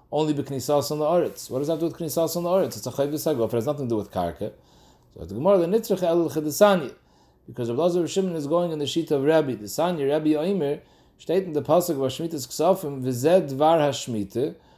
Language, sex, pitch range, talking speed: English, male, 140-180 Hz, 235 wpm